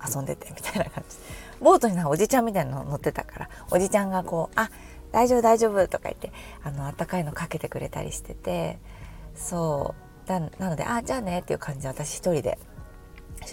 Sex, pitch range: female, 145-215 Hz